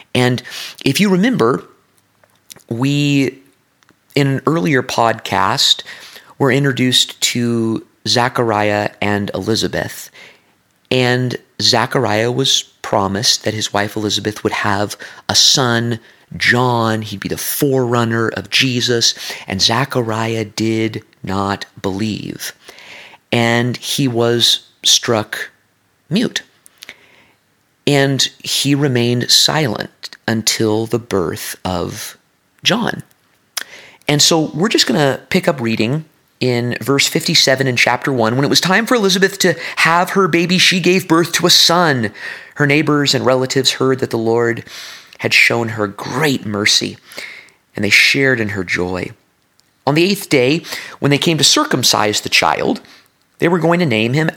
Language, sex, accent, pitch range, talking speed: English, male, American, 110-145 Hz, 130 wpm